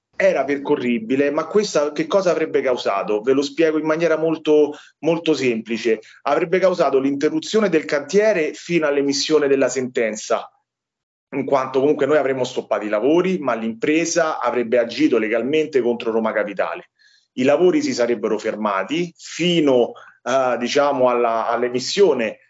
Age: 30-49